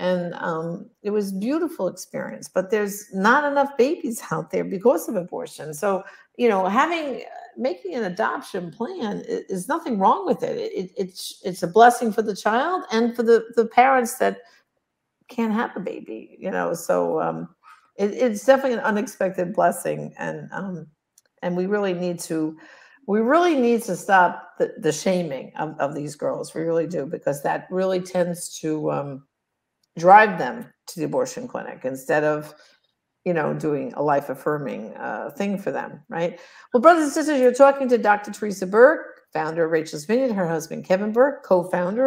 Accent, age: American, 60-79